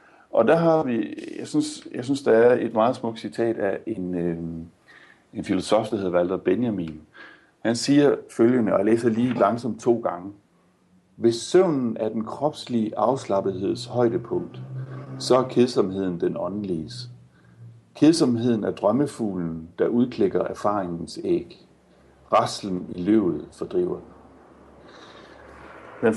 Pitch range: 95-135 Hz